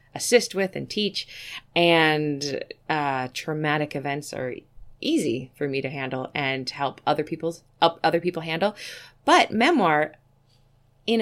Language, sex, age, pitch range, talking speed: English, female, 20-39, 140-195 Hz, 135 wpm